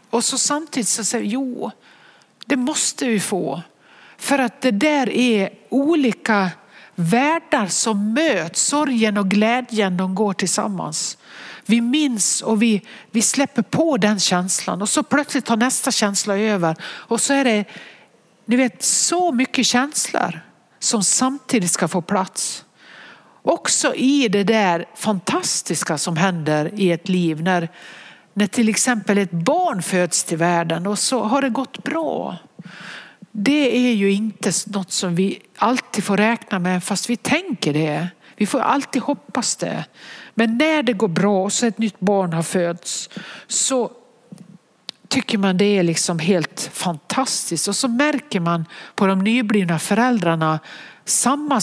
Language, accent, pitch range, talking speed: English, Swedish, 190-250 Hz, 150 wpm